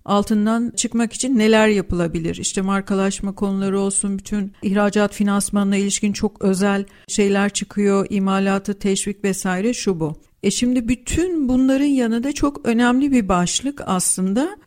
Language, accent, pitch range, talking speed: Turkish, native, 195-255 Hz, 135 wpm